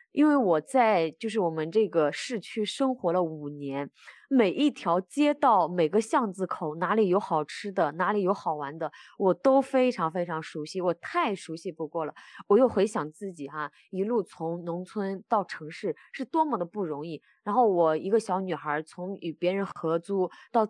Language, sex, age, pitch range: Chinese, female, 20-39, 165-225 Hz